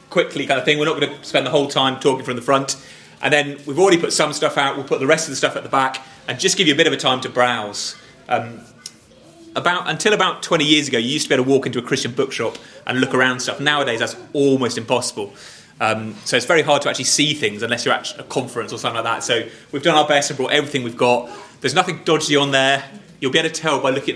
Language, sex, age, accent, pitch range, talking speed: English, male, 30-49, British, 130-170 Hz, 280 wpm